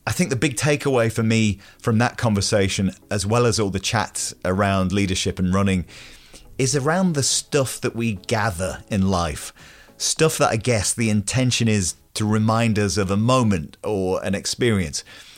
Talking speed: 175 wpm